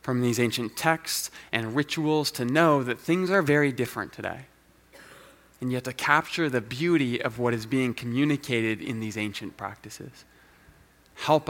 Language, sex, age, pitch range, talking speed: English, male, 20-39, 115-170 Hz, 155 wpm